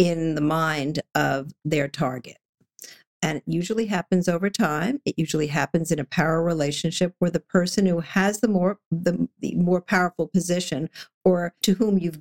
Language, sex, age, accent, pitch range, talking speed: English, female, 50-69, American, 150-190 Hz, 170 wpm